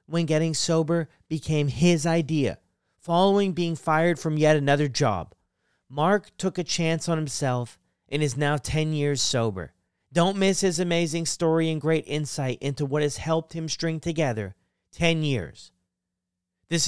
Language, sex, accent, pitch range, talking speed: English, male, American, 115-160 Hz, 155 wpm